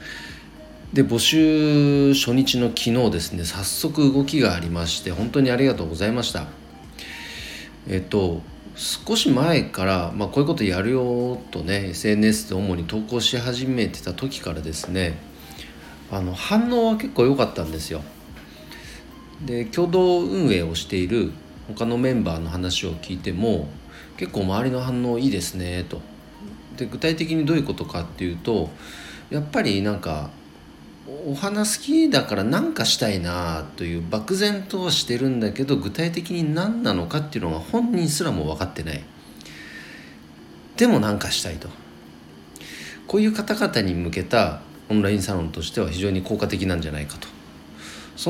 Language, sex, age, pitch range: Japanese, male, 40-59, 80-130 Hz